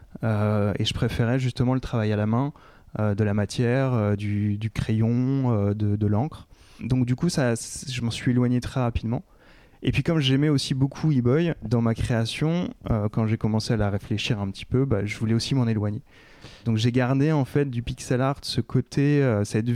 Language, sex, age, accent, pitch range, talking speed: French, male, 20-39, French, 105-130 Hz, 215 wpm